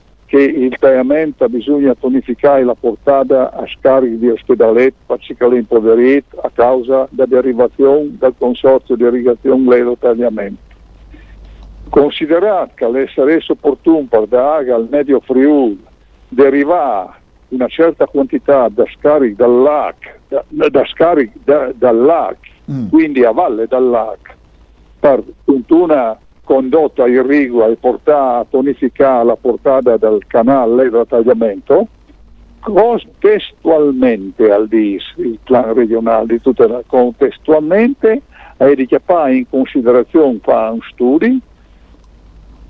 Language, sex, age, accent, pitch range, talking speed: Italian, male, 50-69, native, 110-140 Hz, 110 wpm